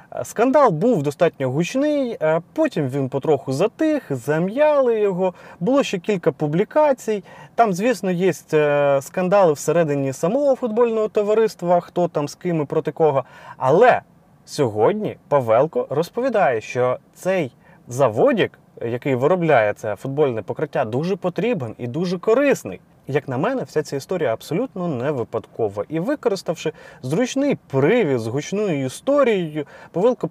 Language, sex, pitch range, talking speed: Ukrainian, male, 135-205 Hz, 125 wpm